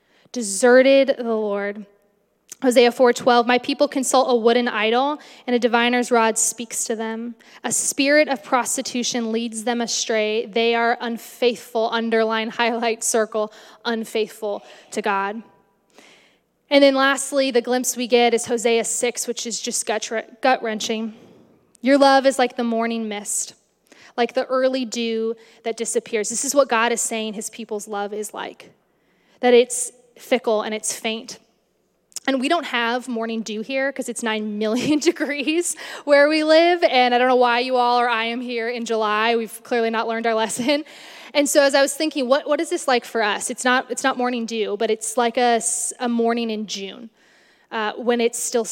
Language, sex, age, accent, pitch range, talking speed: English, female, 10-29, American, 225-260 Hz, 175 wpm